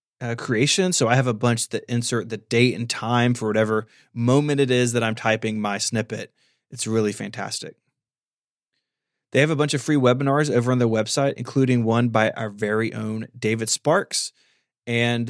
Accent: American